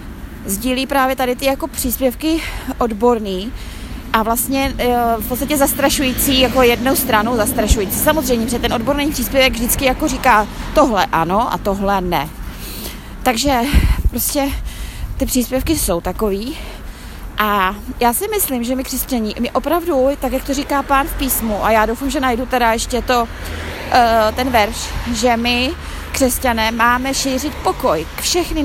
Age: 20-39